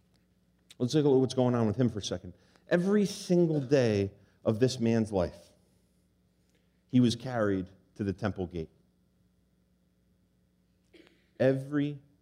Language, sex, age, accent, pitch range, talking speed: English, male, 40-59, American, 90-145 Hz, 130 wpm